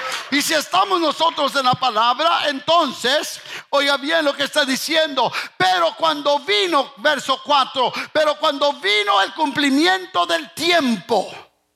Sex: male